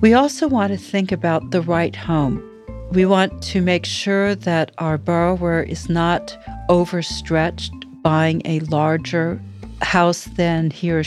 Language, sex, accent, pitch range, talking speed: English, female, American, 160-190 Hz, 145 wpm